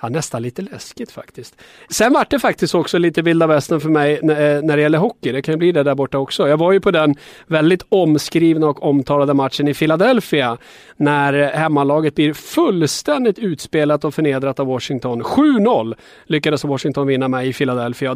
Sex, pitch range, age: male, 140-170 Hz, 30-49